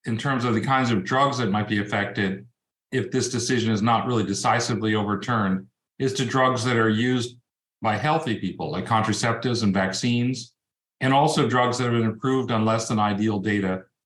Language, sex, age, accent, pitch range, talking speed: English, male, 50-69, American, 110-130 Hz, 190 wpm